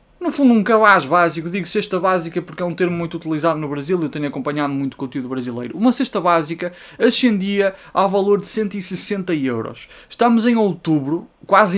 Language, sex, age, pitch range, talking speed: Portuguese, male, 20-39, 145-205 Hz, 190 wpm